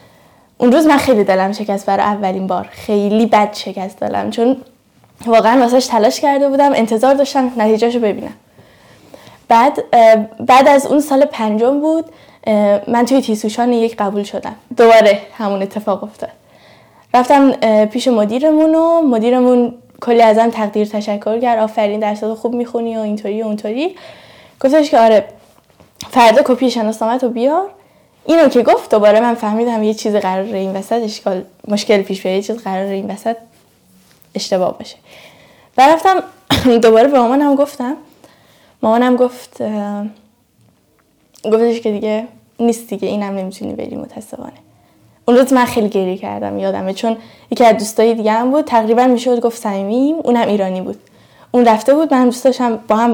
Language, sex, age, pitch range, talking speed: Persian, female, 10-29, 210-255 Hz, 150 wpm